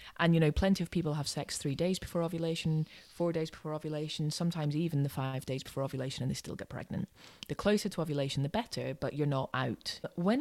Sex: female